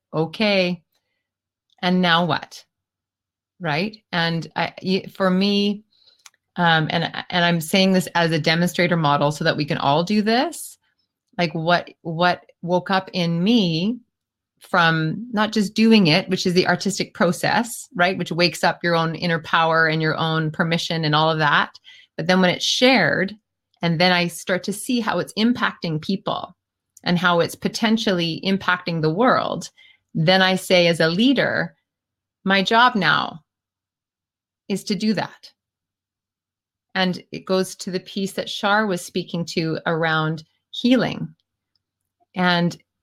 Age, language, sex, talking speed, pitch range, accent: 30-49, English, female, 150 wpm, 165-195 Hz, American